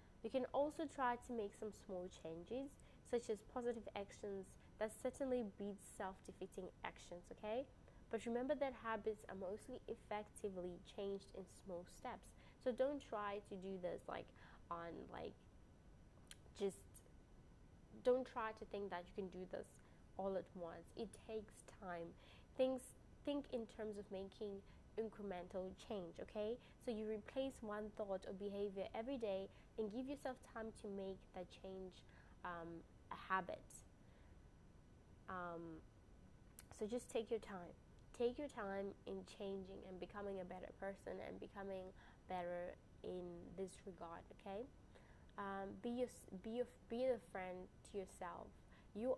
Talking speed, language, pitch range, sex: 140 wpm, English, 180-225 Hz, female